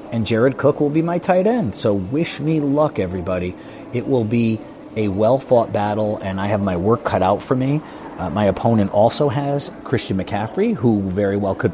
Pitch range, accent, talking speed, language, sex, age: 100-120 Hz, American, 200 wpm, English, male, 40-59